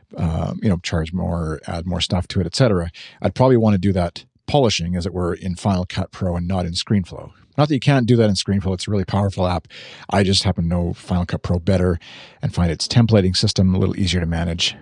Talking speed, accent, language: 245 wpm, American, English